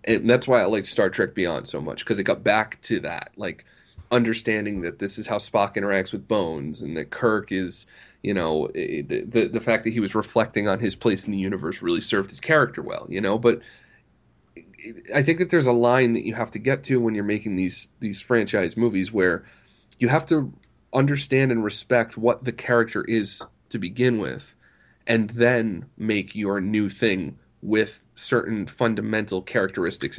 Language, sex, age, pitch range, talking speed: English, male, 30-49, 100-120 Hz, 195 wpm